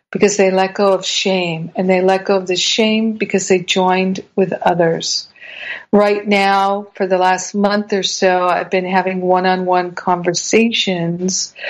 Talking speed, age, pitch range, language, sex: 160 wpm, 50-69, 185-200 Hz, English, female